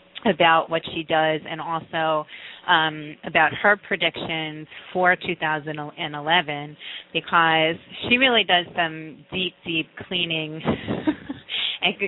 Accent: American